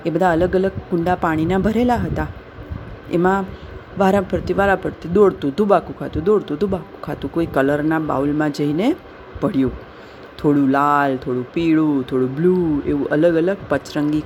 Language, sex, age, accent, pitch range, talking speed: Gujarati, female, 40-59, native, 135-180 Hz, 140 wpm